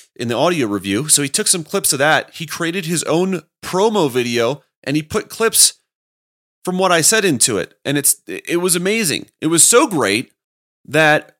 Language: English